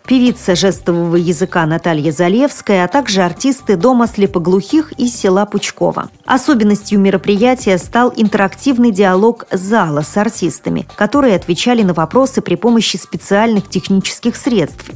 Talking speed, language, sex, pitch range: 120 wpm, Russian, female, 175-225 Hz